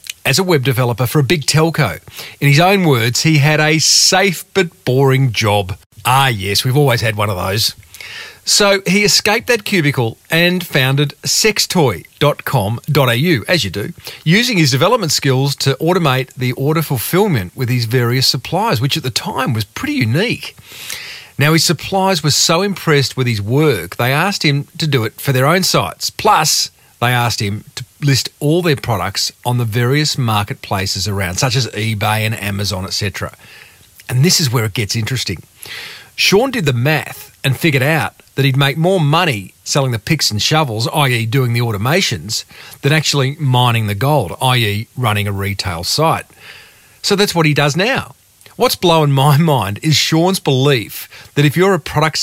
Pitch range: 115-160 Hz